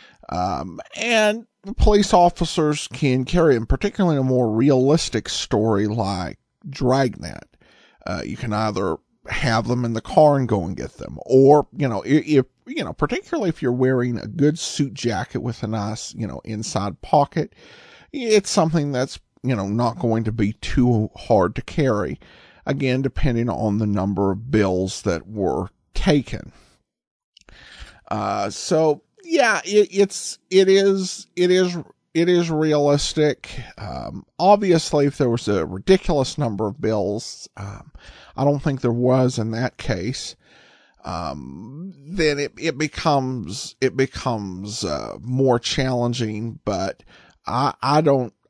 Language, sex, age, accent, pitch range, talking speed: English, male, 50-69, American, 110-155 Hz, 145 wpm